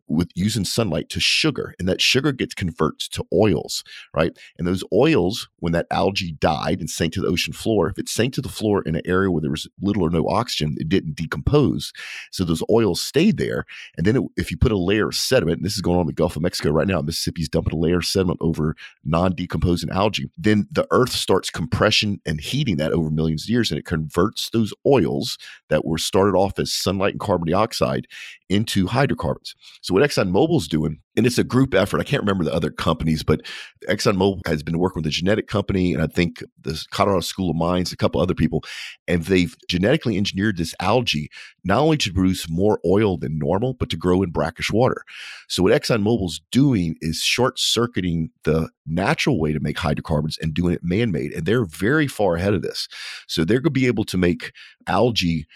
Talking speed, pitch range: 215 wpm, 80-100 Hz